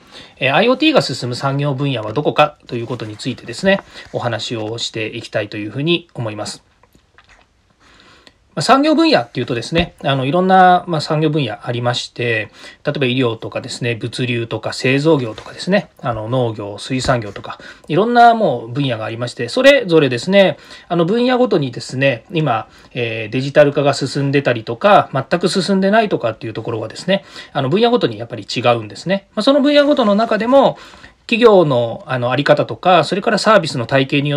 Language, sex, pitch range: Japanese, male, 120-195 Hz